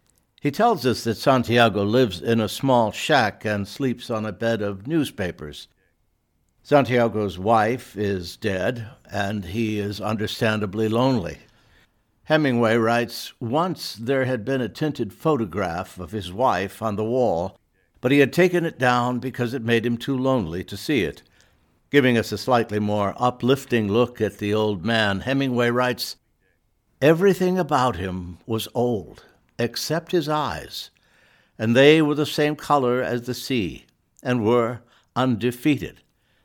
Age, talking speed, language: 60-79, 145 wpm, English